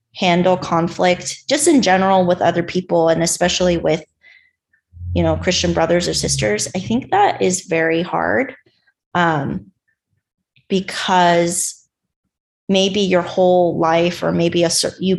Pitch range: 165-190 Hz